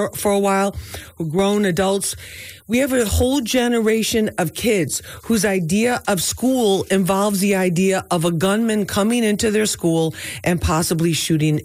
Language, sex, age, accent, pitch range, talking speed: English, female, 40-59, American, 165-205 Hz, 150 wpm